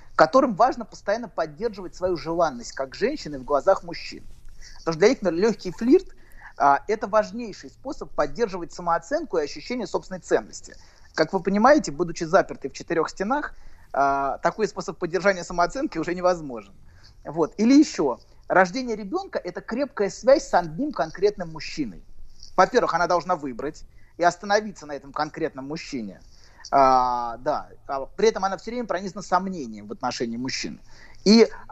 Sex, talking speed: male, 150 wpm